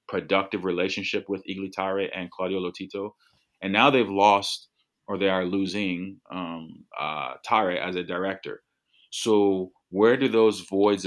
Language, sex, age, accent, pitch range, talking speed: English, male, 30-49, American, 90-105 Hz, 145 wpm